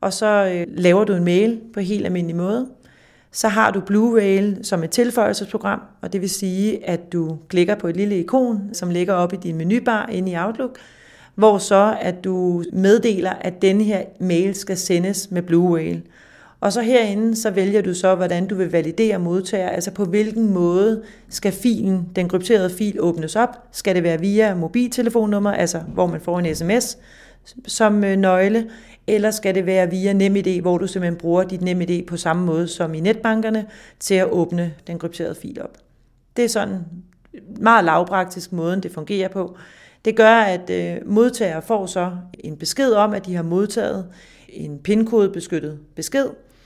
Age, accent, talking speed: 40-59, native, 180 wpm